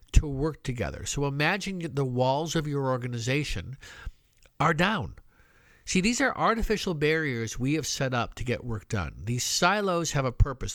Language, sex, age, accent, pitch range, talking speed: English, male, 50-69, American, 110-160 Hz, 165 wpm